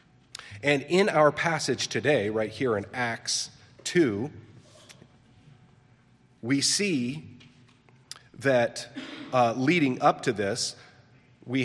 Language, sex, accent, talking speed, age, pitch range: English, male, American, 100 wpm, 40-59, 100-125 Hz